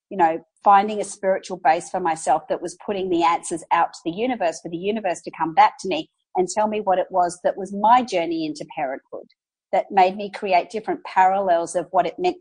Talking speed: 225 wpm